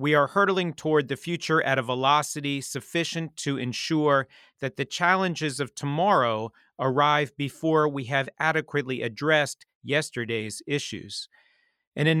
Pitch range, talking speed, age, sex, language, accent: 135-165 Hz, 135 wpm, 40-59, male, English, American